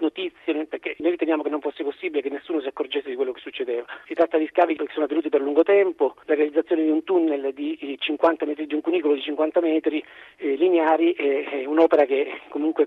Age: 40-59